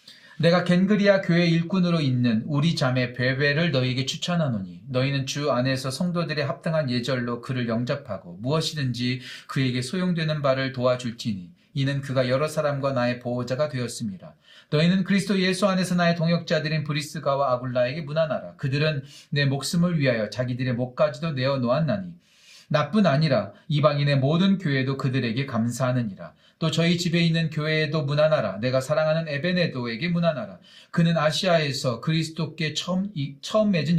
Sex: male